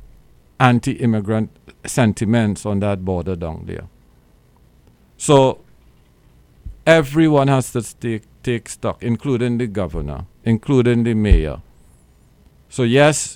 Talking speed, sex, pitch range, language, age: 100 wpm, male, 105-135 Hz, English, 50-69